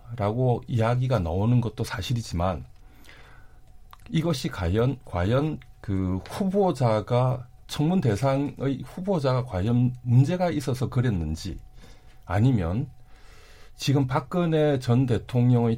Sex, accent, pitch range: male, native, 105-145 Hz